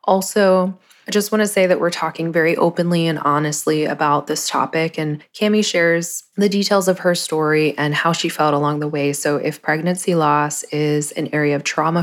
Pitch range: 150-170 Hz